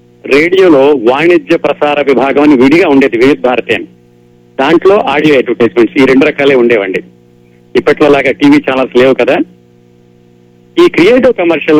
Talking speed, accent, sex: 120 wpm, native, male